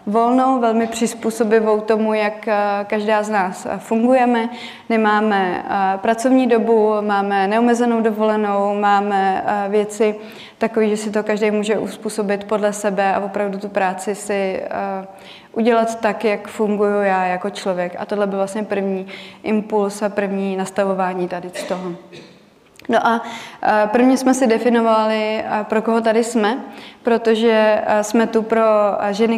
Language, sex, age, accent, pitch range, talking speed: Czech, female, 20-39, native, 205-225 Hz, 135 wpm